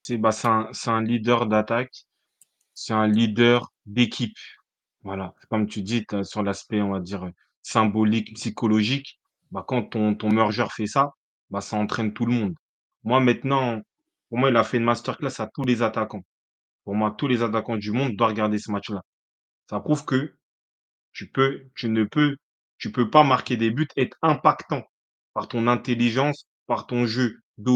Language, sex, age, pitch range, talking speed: French, male, 30-49, 110-150 Hz, 170 wpm